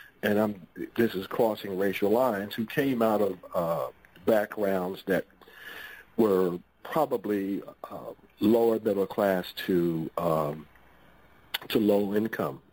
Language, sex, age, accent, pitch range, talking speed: English, male, 50-69, American, 90-105 Hz, 115 wpm